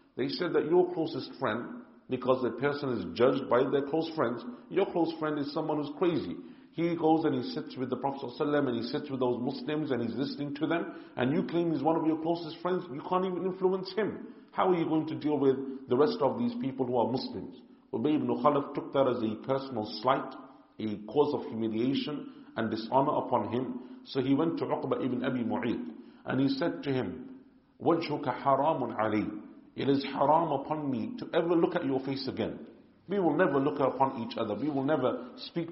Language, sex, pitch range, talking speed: English, male, 125-165 Hz, 215 wpm